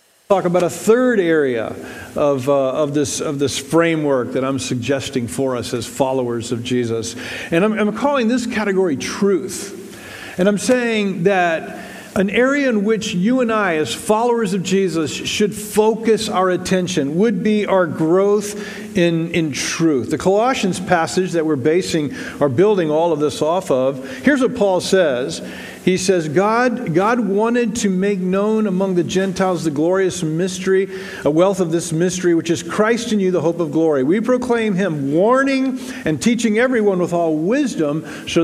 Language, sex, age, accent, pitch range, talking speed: English, male, 50-69, American, 155-210 Hz, 170 wpm